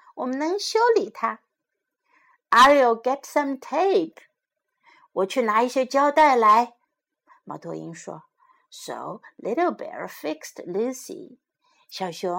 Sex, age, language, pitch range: female, 60-79, Chinese, 250-390 Hz